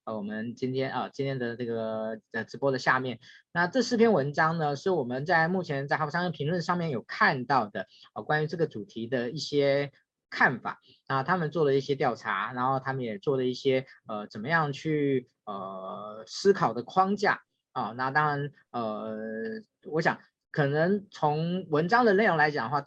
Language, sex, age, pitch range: Chinese, male, 20-39, 125-165 Hz